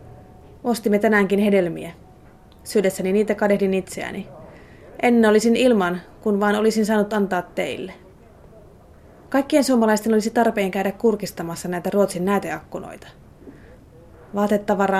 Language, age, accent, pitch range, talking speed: Finnish, 30-49, native, 185-225 Hz, 105 wpm